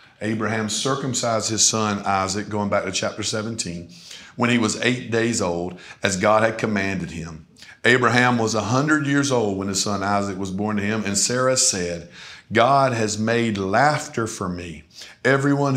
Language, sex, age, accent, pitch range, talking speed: English, male, 50-69, American, 100-130 Hz, 165 wpm